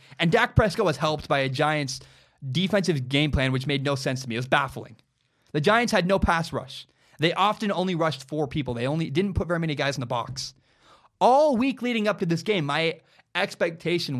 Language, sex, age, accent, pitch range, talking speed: English, male, 20-39, American, 135-170 Hz, 215 wpm